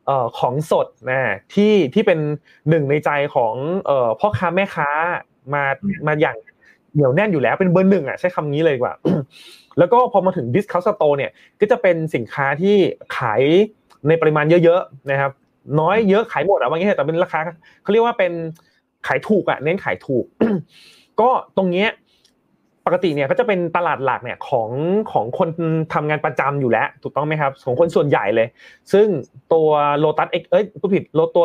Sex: male